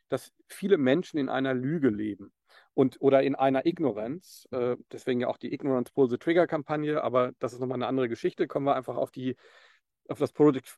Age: 50-69